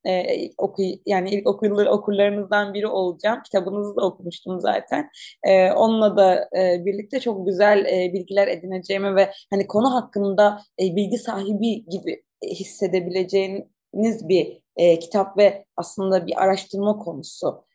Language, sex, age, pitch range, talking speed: Turkish, female, 30-49, 190-215 Hz, 130 wpm